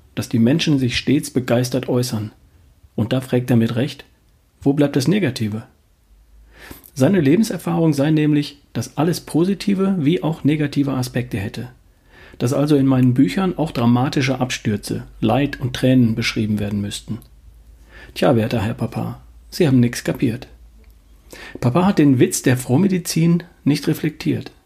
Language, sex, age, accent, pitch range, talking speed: German, male, 40-59, German, 110-145 Hz, 145 wpm